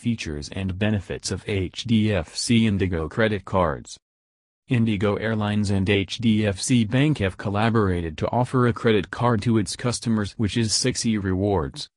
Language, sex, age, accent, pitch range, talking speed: English, male, 40-59, American, 95-115 Hz, 135 wpm